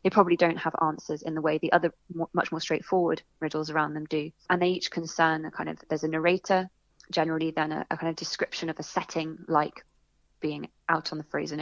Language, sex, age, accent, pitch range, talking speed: English, female, 20-39, British, 160-185 Hz, 220 wpm